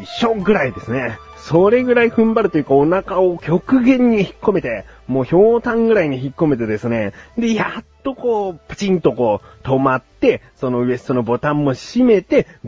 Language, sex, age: Japanese, male, 30-49